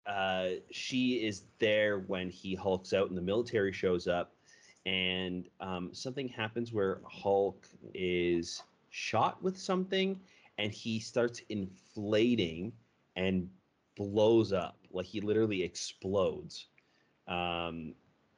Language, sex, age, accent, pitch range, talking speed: English, male, 30-49, American, 90-105 Hz, 115 wpm